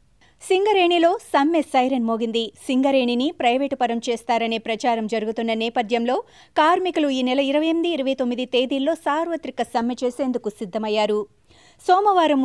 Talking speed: 115 wpm